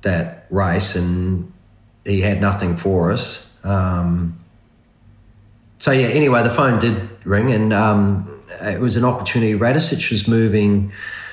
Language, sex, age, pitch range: English, male, 40-59, 100-115 Hz